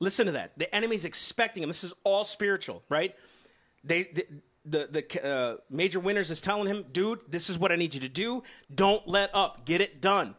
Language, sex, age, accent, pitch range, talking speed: English, male, 40-59, American, 170-225 Hz, 210 wpm